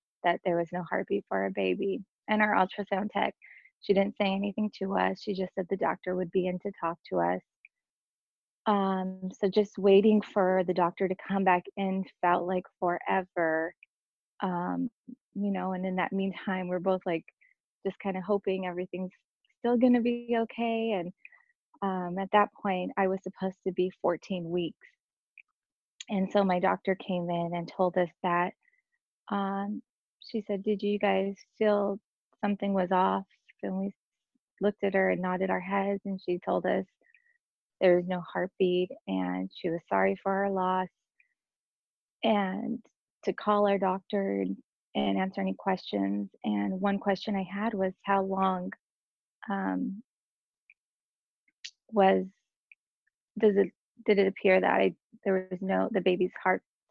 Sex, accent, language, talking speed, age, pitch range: female, American, English, 160 wpm, 20-39, 180-205 Hz